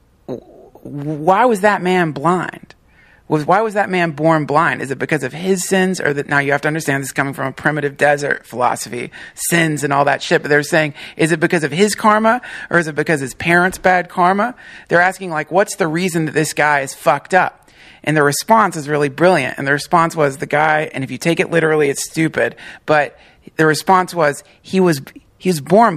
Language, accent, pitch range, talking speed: English, American, 145-180 Hz, 220 wpm